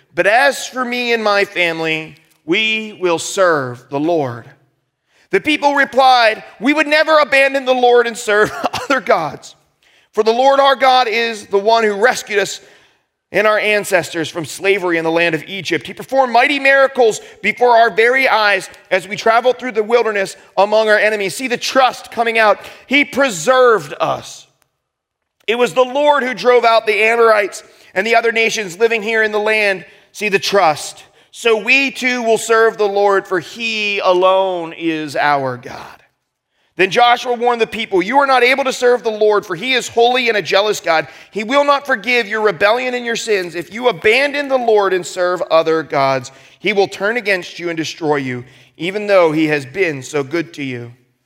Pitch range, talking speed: 165-240 Hz, 190 wpm